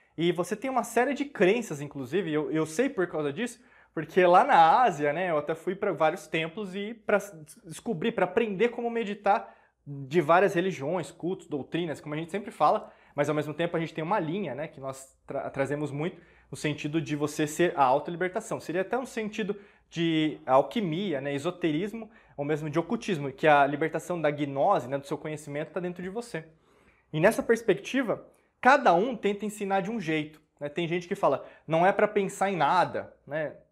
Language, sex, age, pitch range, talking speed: Portuguese, male, 20-39, 155-205 Hz, 200 wpm